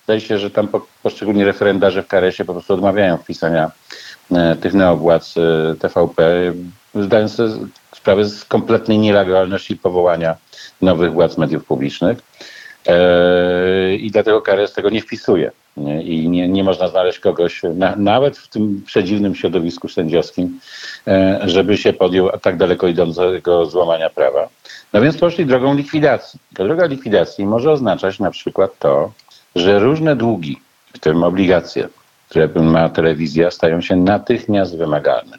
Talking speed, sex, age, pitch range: 145 wpm, male, 50-69, 85-110 Hz